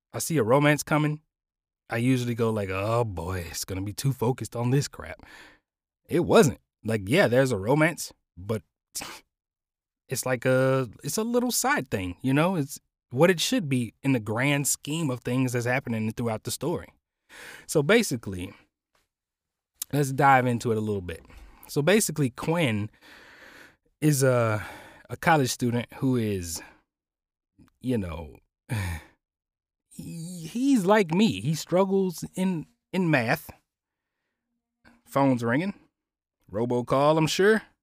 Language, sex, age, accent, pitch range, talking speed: English, male, 20-39, American, 105-150 Hz, 140 wpm